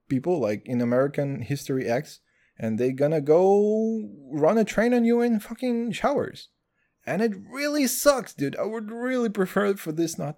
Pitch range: 130-210 Hz